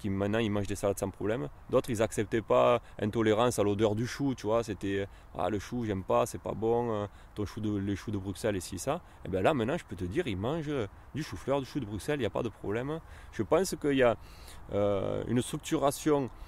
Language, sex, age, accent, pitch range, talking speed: French, male, 20-39, French, 100-125 Hz, 250 wpm